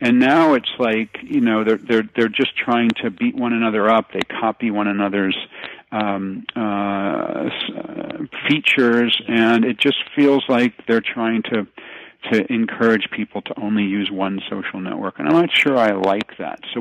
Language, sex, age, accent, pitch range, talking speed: English, male, 50-69, American, 105-130 Hz, 170 wpm